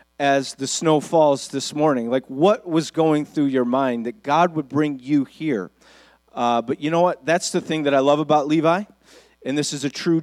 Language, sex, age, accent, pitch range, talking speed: English, male, 40-59, American, 130-155 Hz, 215 wpm